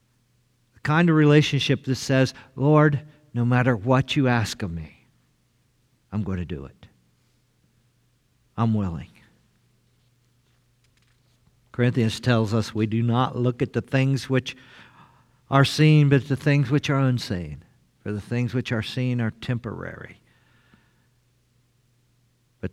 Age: 50-69